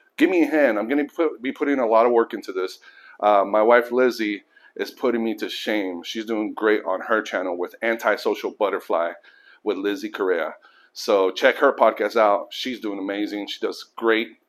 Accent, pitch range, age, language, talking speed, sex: American, 110-155 Hz, 30-49, English, 195 wpm, male